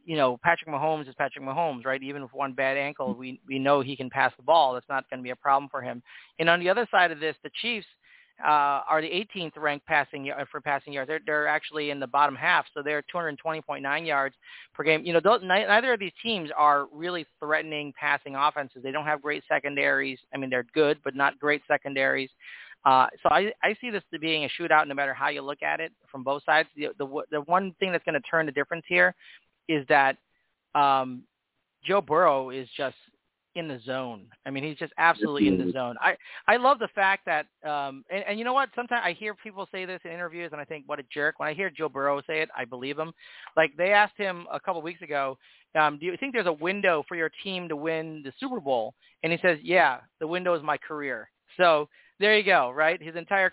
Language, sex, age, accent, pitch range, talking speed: English, male, 40-59, American, 140-175 Hz, 235 wpm